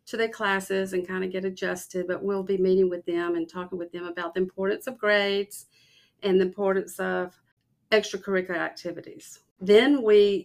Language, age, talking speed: English, 50-69, 180 wpm